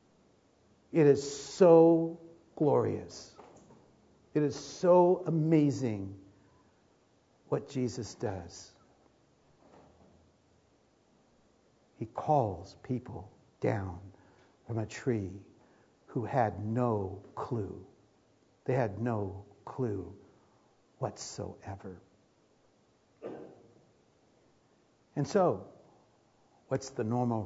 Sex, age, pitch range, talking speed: male, 60-79, 105-160 Hz, 70 wpm